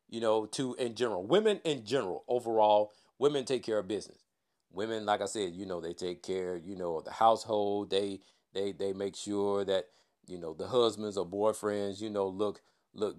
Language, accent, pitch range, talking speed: English, American, 100-120 Hz, 200 wpm